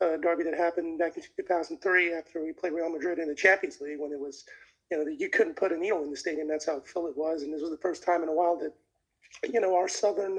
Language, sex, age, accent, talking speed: English, male, 20-39, American, 285 wpm